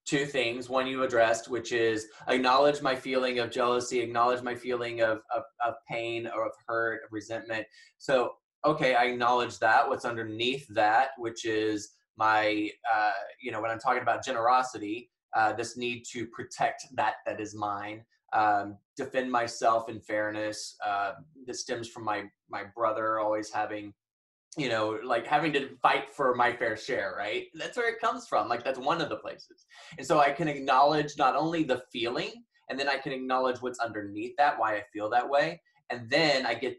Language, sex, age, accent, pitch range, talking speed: English, male, 20-39, American, 105-130 Hz, 185 wpm